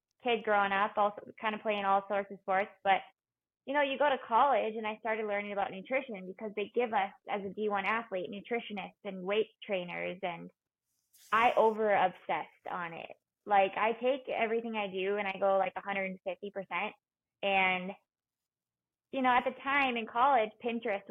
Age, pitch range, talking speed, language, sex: 20-39, 200-235 Hz, 190 wpm, English, female